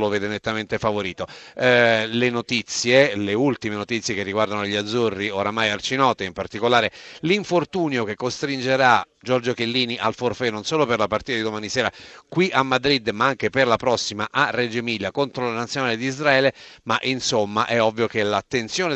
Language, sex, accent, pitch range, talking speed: Italian, male, native, 110-135 Hz, 175 wpm